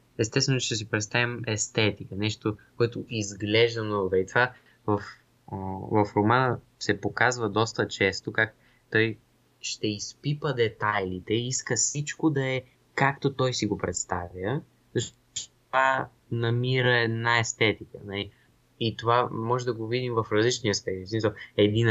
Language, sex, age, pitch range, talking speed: Bulgarian, male, 20-39, 105-120 Hz, 135 wpm